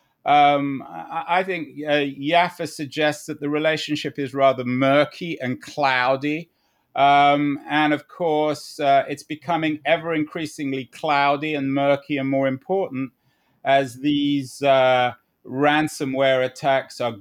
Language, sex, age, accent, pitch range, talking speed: English, male, 30-49, British, 130-155 Hz, 120 wpm